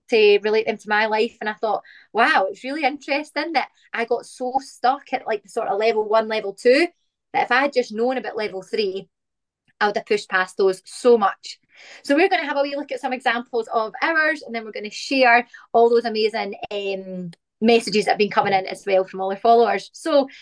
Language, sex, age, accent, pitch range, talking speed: English, female, 20-39, British, 210-270 Hz, 235 wpm